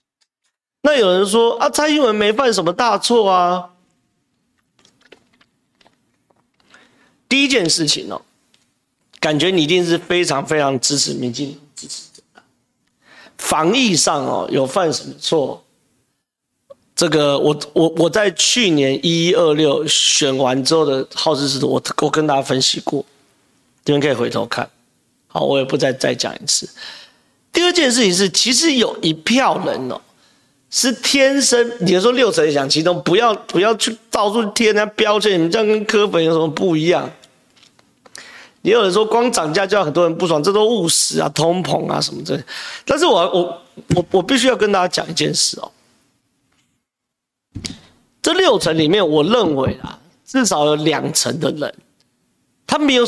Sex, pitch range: male, 160-235 Hz